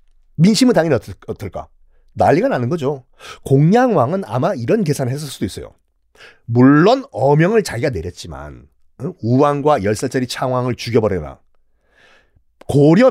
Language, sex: Korean, male